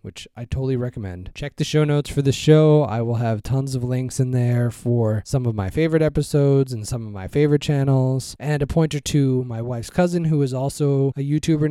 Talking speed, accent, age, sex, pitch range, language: 220 wpm, American, 20-39, male, 125-155 Hz, English